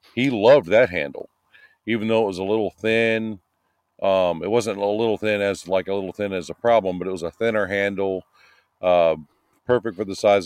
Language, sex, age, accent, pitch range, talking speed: English, male, 40-59, American, 90-110 Hz, 205 wpm